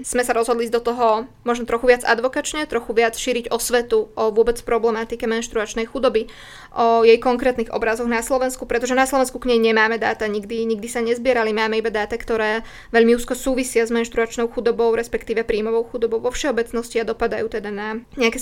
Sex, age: female, 20-39